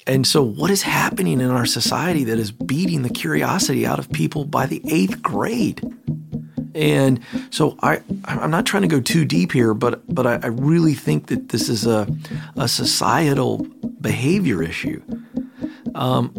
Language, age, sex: English, 40-59, male